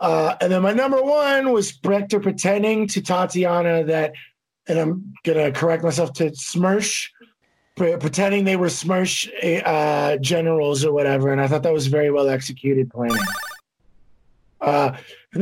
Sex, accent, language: male, American, English